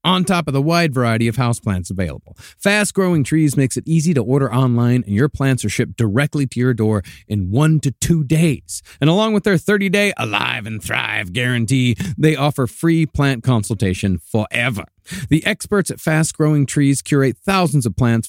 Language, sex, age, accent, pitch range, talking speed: English, male, 40-59, American, 115-150 Hz, 185 wpm